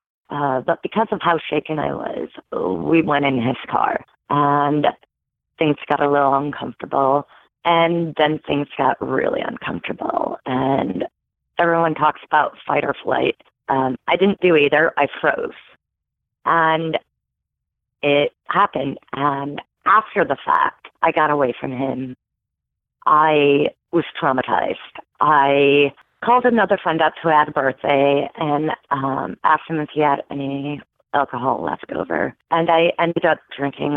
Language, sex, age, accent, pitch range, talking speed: English, female, 30-49, American, 140-165 Hz, 140 wpm